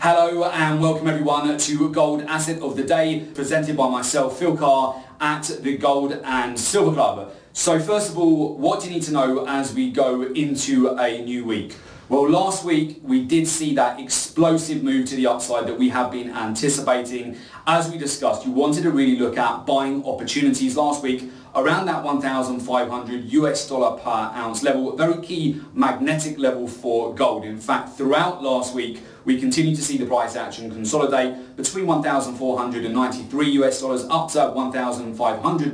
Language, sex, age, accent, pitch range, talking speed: English, male, 30-49, British, 125-155 Hz, 170 wpm